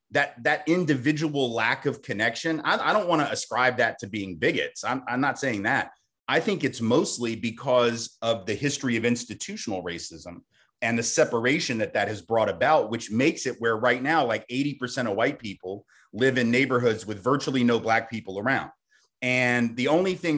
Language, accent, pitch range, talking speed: English, American, 115-135 Hz, 190 wpm